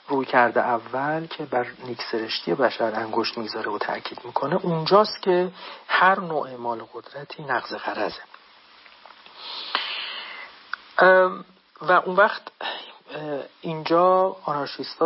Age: 40-59